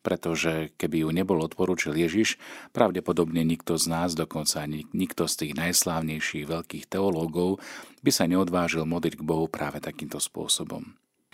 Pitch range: 80-95 Hz